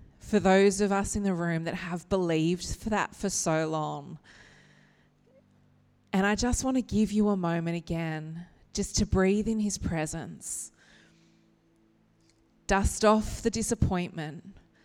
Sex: female